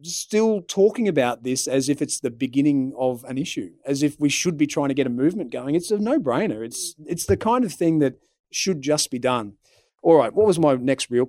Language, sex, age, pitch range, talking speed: English, male, 30-49, 135-185 Hz, 240 wpm